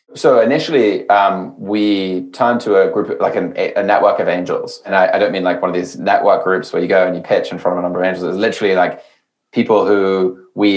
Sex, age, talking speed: male, 20-39, 245 wpm